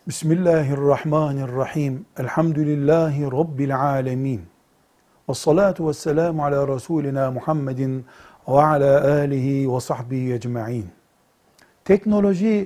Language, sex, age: Turkish, male, 60-79